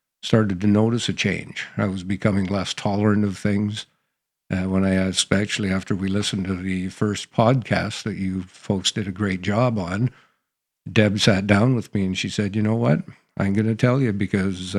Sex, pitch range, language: male, 95-115 Hz, English